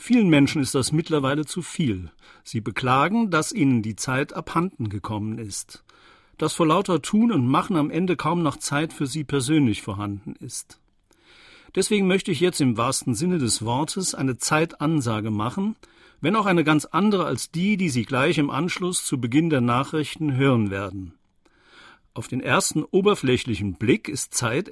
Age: 50-69